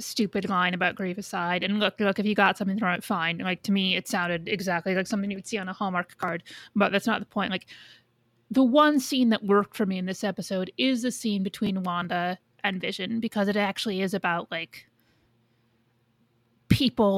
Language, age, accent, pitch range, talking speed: English, 30-49, American, 170-210 Hz, 205 wpm